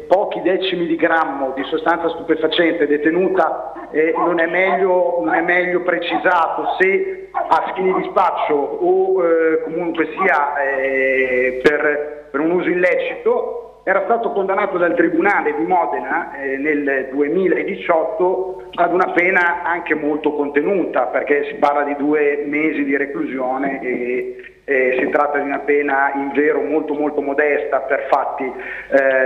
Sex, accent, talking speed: male, native, 145 wpm